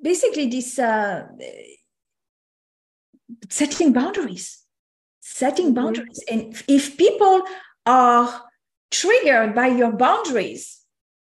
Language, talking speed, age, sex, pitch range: English, 80 wpm, 50-69, female, 235-340 Hz